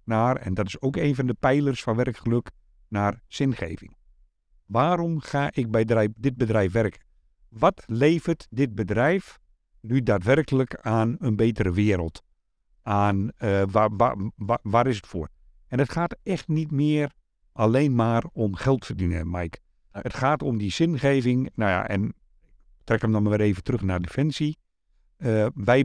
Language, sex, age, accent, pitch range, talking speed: Dutch, male, 50-69, Belgian, 95-135 Hz, 160 wpm